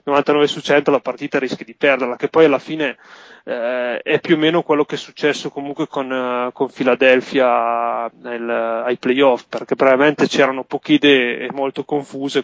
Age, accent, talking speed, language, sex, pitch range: 20-39, native, 185 wpm, Italian, male, 125-145 Hz